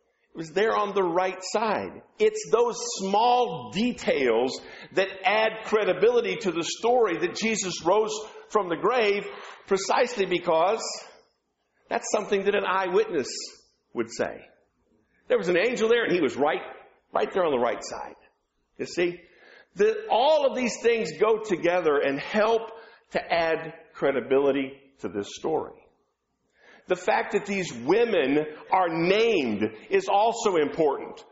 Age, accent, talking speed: 50-69, American, 140 wpm